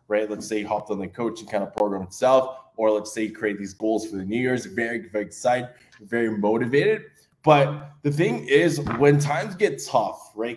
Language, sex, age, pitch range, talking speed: English, male, 20-39, 100-125 Hz, 210 wpm